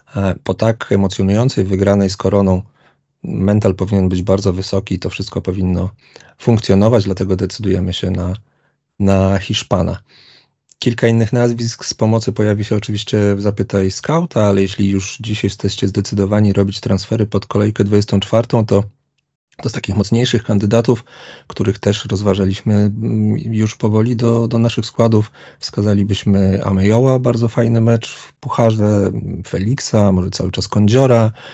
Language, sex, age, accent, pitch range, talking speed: Polish, male, 30-49, native, 100-115 Hz, 135 wpm